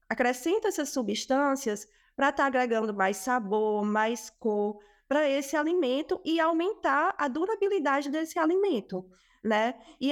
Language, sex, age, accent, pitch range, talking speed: Portuguese, female, 20-39, Brazilian, 235-320 Hz, 125 wpm